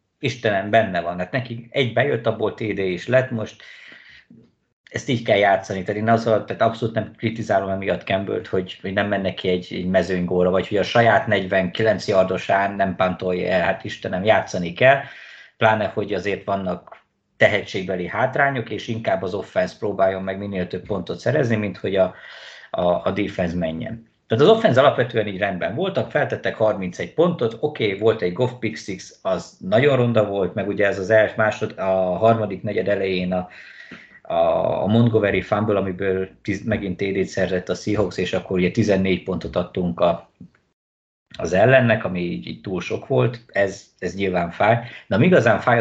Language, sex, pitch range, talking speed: Hungarian, male, 95-110 Hz, 175 wpm